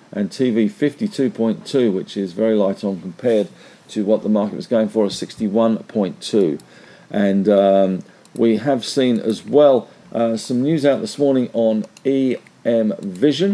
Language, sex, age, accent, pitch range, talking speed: English, male, 50-69, British, 105-135 Hz, 150 wpm